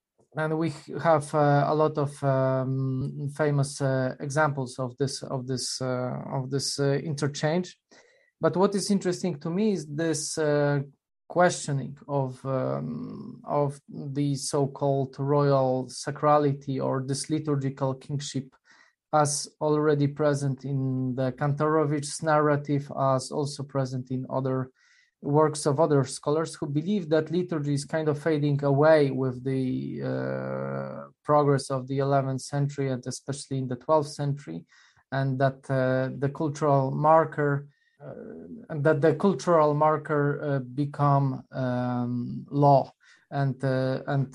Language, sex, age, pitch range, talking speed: English, male, 20-39, 130-150 Hz, 135 wpm